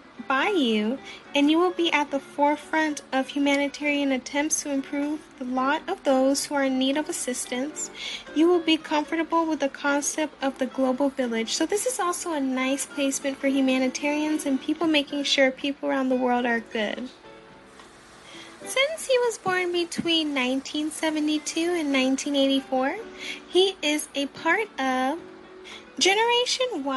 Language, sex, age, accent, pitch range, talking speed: English, female, 10-29, American, 265-320 Hz, 155 wpm